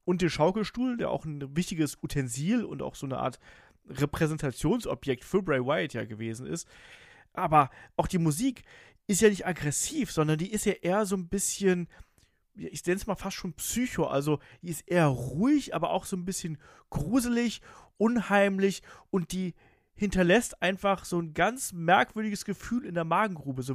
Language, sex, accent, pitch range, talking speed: German, male, German, 145-195 Hz, 170 wpm